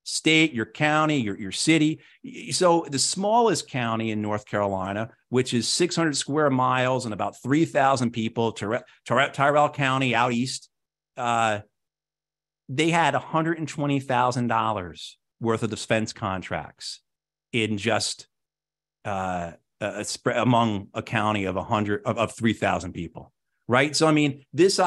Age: 50-69